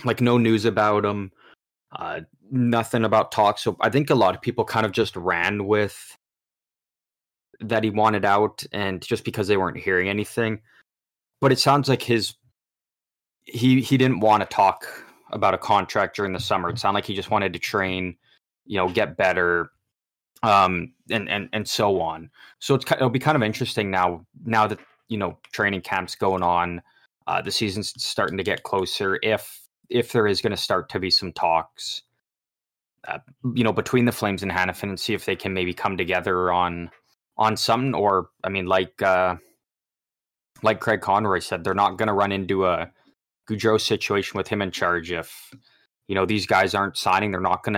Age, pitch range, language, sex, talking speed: 20-39, 95-110 Hz, English, male, 190 wpm